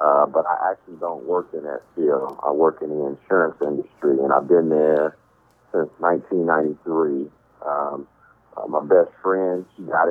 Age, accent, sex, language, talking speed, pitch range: 40-59, American, male, English, 165 wpm, 80-95 Hz